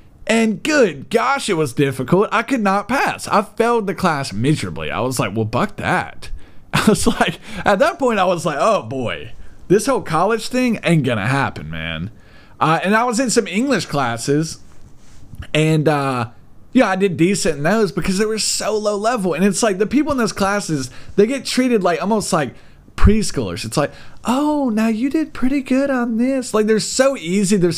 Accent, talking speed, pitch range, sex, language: American, 205 wpm, 145-220 Hz, male, English